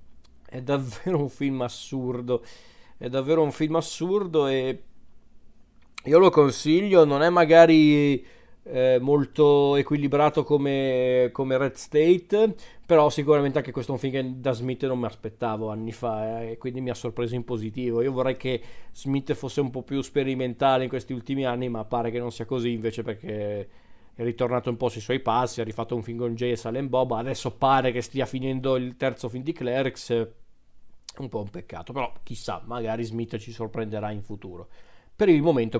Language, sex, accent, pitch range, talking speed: Italian, male, native, 115-140 Hz, 185 wpm